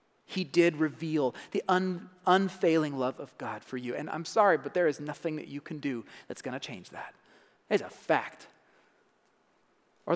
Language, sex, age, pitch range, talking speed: English, male, 30-49, 155-215 Hz, 175 wpm